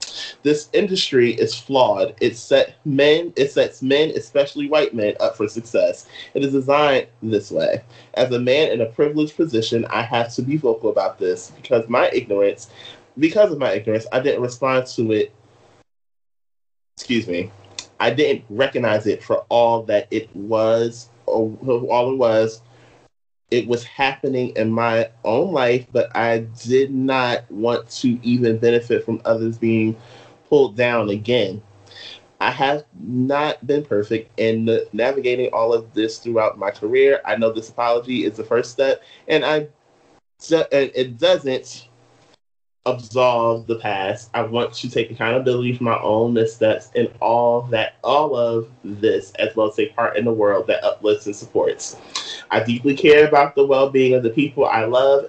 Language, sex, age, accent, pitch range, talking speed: English, male, 30-49, American, 115-145 Hz, 165 wpm